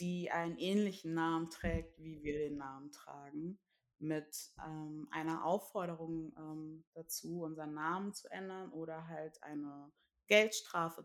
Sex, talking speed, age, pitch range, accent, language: female, 130 wpm, 20-39, 155-185 Hz, German, German